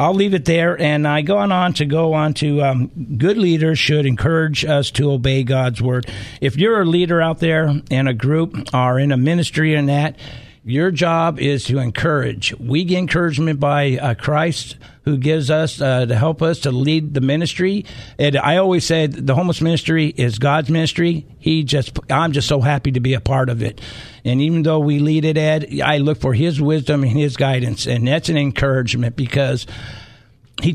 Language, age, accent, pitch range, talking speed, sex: English, 50-69, American, 135-170 Hz, 200 wpm, male